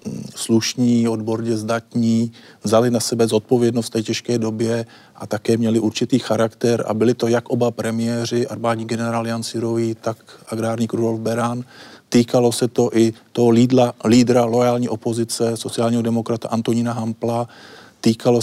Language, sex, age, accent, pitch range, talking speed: Czech, male, 40-59, native, 115-130 Hz, 145 wpm